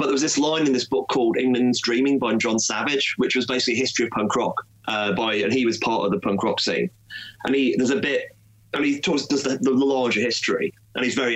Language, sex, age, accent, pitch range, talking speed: English, male, 30-49, British, 110-130 Hz, 270 wpm